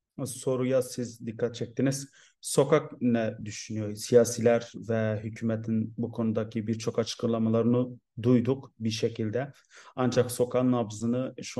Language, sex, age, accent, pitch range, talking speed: Turkish, male, 30-49, native, 110-120 Hz, 110 wpm